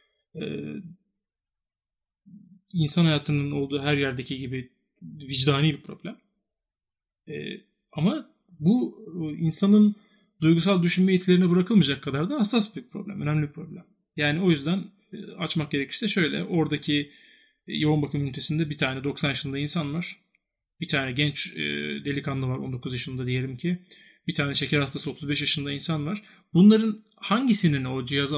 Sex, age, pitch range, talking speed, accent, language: male, 30-49, 140-180 Hz, 130 wpm, native, Turkish